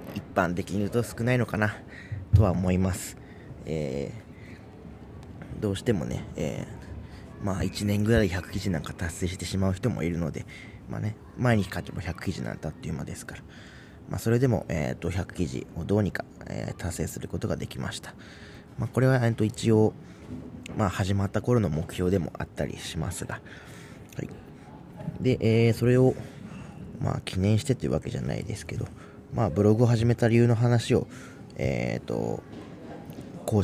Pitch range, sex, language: 90-120 Hz, male, Japanese